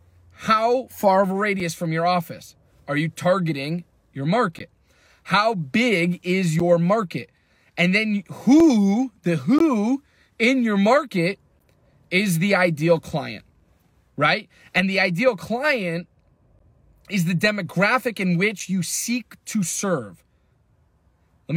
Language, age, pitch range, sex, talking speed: English, 30-49, 160-225 Hz, male, 125 wpm